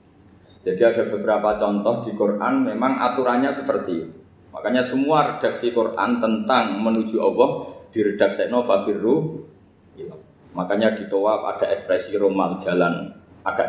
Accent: native